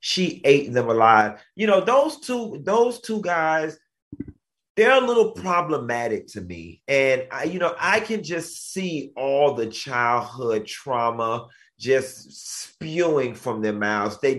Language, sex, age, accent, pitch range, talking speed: English, male, 30-49, American, 125-165 Hz, 145 wpm